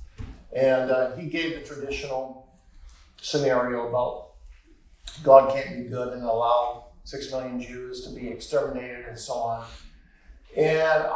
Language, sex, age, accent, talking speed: English, male, 50-69, American, 130 wpm